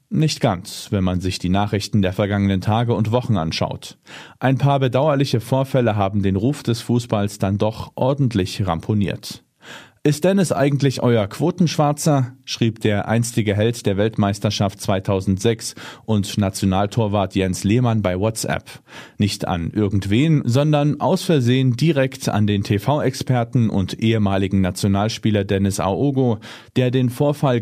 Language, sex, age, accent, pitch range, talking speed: German, male, 40-59, German, 100-130 Hz, 135 wpm